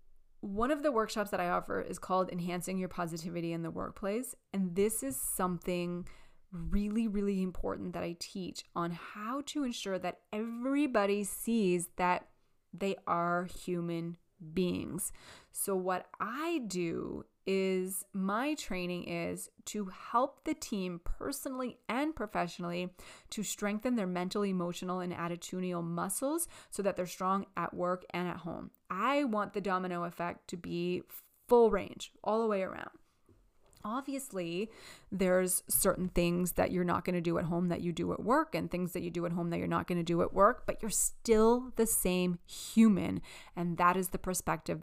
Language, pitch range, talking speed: English, 175-210 Hz, 165 wpm